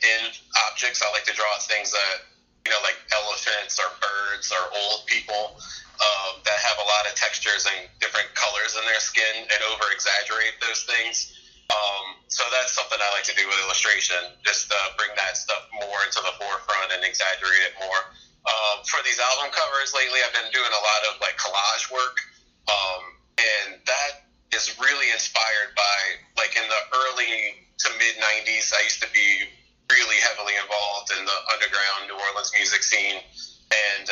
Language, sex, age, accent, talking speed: English, male, 30-49, American, 180 wpm